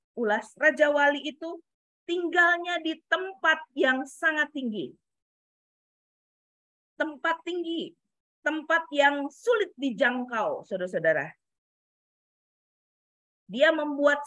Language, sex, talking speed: Indonesian, female, 75 wpm